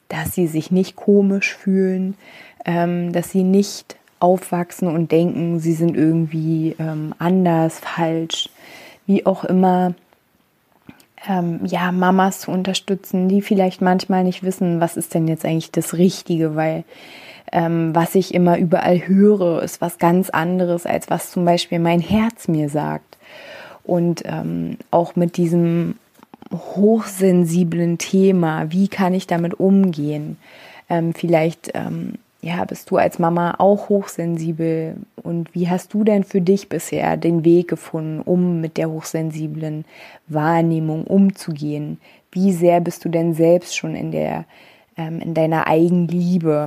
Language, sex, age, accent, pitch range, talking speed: German, female, 20-39, German, 160-185 Hz, 140 wpm